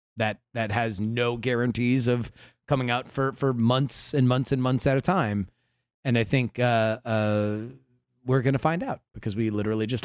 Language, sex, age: English, male, 30-49